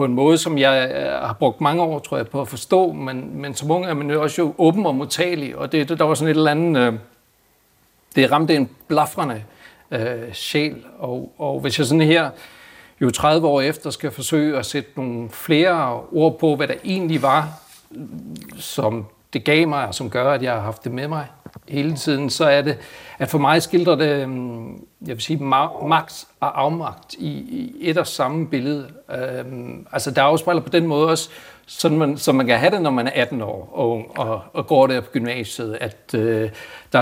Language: Danish